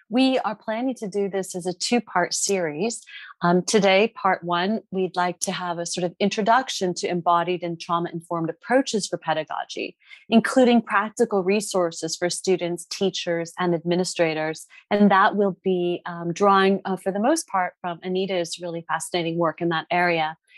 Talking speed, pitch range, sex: 170 wpm, 175-225 Hz, female